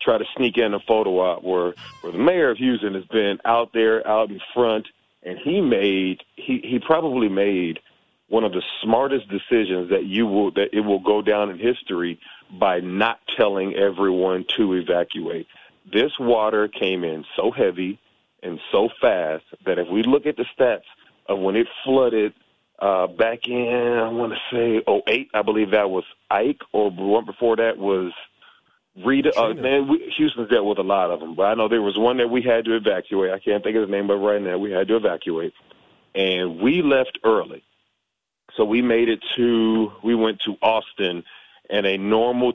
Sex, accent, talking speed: male, American, 190 wpm